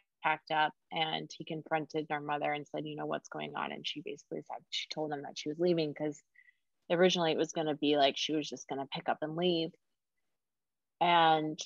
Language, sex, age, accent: English, female, 30-49, American